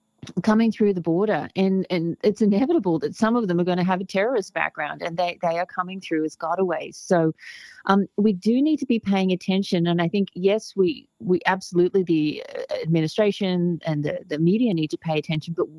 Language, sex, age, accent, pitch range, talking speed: English, female, 30-49, Australian, 160-200 Hz, 205 wpm